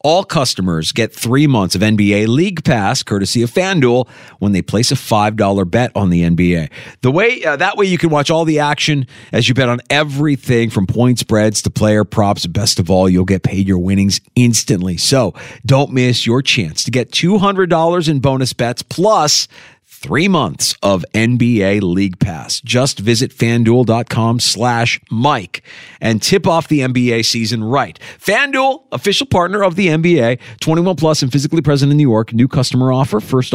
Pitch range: 100-140 Hz